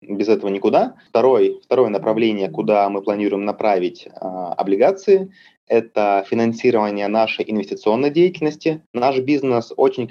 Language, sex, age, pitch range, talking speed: Russian, male, 20-39, 110-135 Hz, 115 wpm